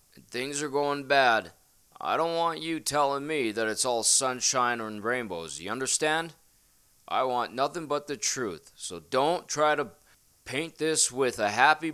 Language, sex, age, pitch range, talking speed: English, male, 20-39, 115-150 Hz, 170 wpm